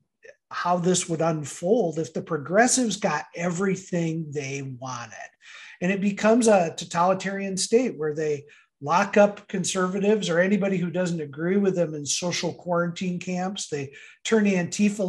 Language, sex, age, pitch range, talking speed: English, male, 50-69, 165-205 Hz, 145 wpm